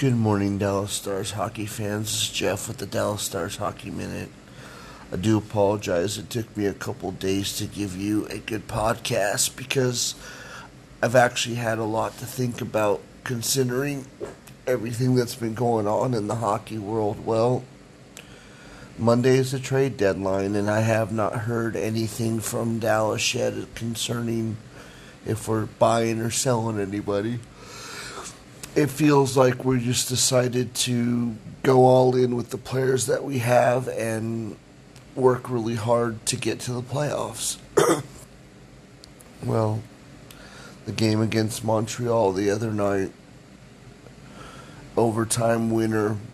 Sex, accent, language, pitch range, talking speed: male, American, English, 110-125 Hz, 135 wpm